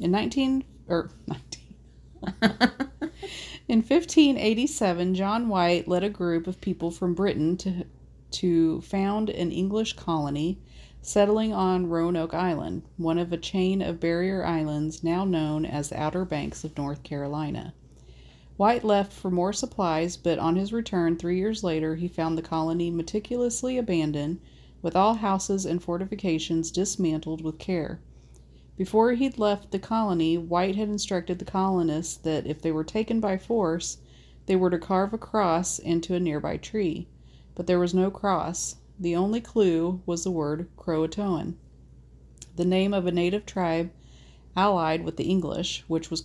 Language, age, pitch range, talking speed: English, 40-59, 160-195 Hz, 155 wpm